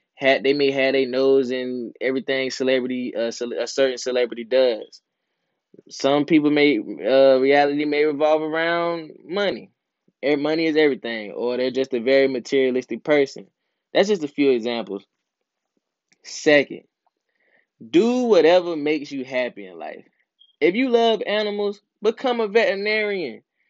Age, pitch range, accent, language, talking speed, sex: 10-29, 125-155 Hz, American, English, 135 wpm, male